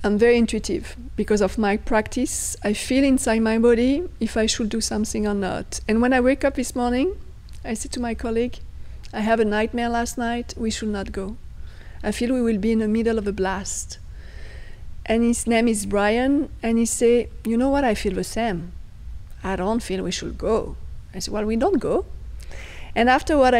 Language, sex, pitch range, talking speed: English, female, 205-255 Hz, 210 wpm